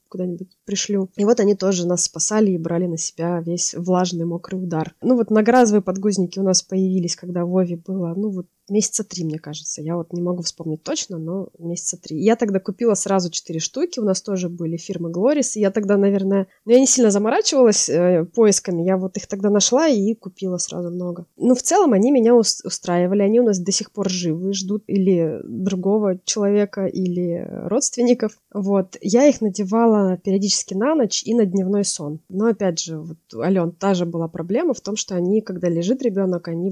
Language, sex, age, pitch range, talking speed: Russian, female, 20-39, 175-210 Hz, 190 wpm